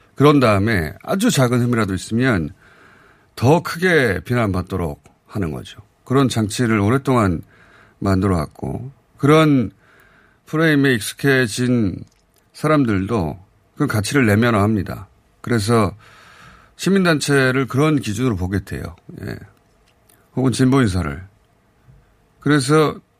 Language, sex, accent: Korean, male, native